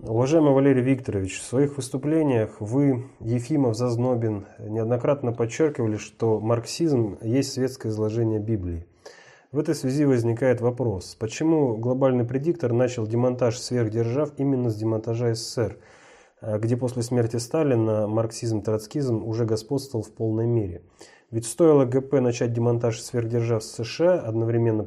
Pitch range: 110-130 Hz